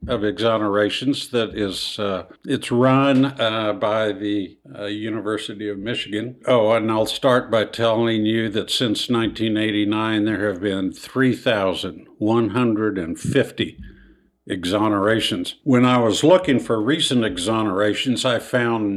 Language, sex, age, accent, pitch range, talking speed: English, male, 60-79, American, 105-125 Hz, 120 wpm